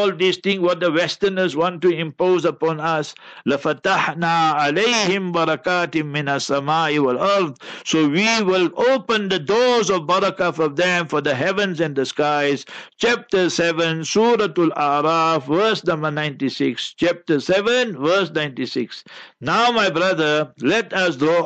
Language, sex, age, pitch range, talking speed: English, male, 60-79, 160-190 Hz, 125 wpm